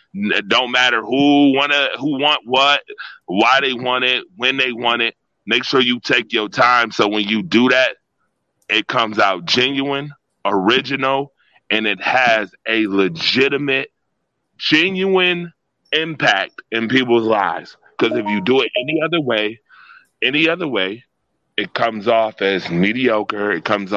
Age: 30-49